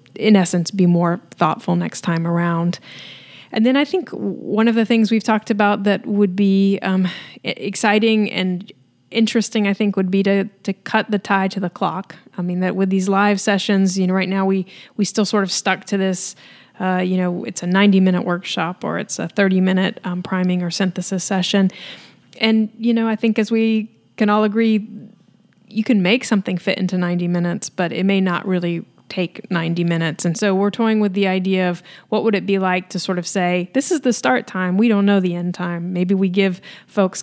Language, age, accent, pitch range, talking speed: English, 30-49, American, 180-210 Hz, 210 wpm